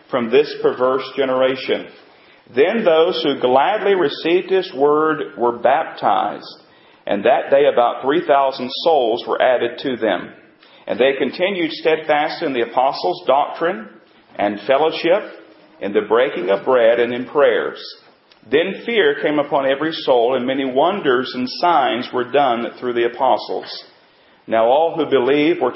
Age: 40-59